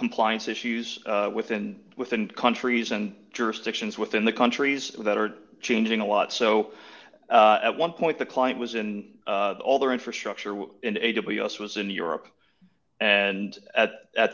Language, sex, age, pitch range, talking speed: English, male, 30-49, 110-145 Hz, 155 wpm